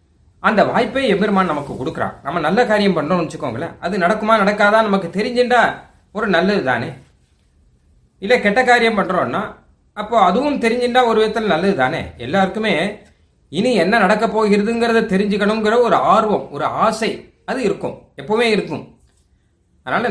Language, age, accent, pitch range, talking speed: Tamil, 30-49, native, 155-210 Hz, 125 wpm